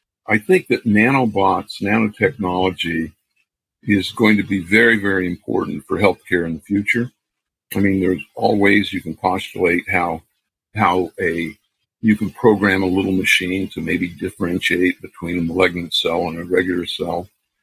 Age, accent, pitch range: 60-79, American, 90-110 Hz